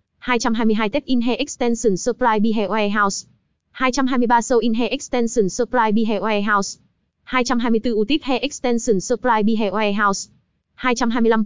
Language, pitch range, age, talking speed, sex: Vietnamese, 210-240 Hz, 20-39, 115 wpm, female